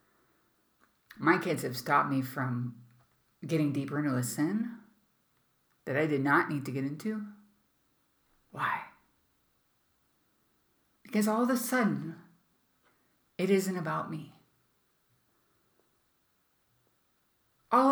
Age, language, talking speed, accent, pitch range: 50-69, English, 100 wpm, American, 145-215 Hz